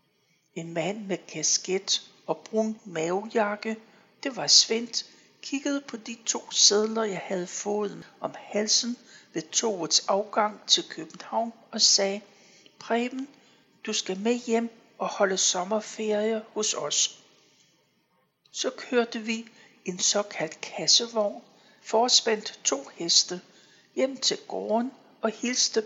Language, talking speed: Danish, 120 wpm